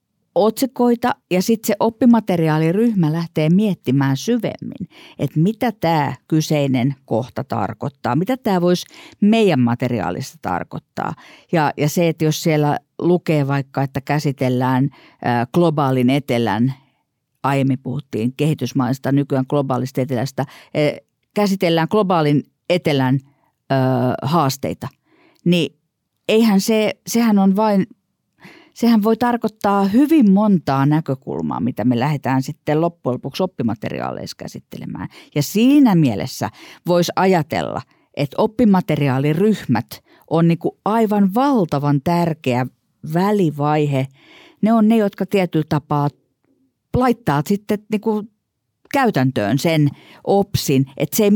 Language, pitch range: Finnish, 135-205 Hz